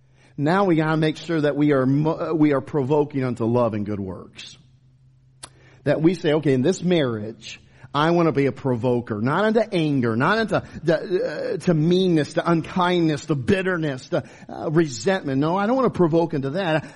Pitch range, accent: 130-180 Hz, American